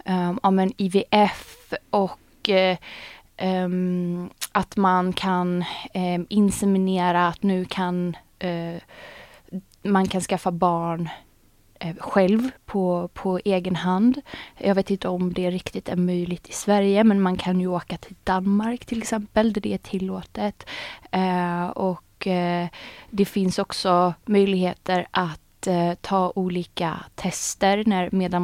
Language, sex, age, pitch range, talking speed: Swedish, female, 20-39, 180-210 Hz, 110 wpm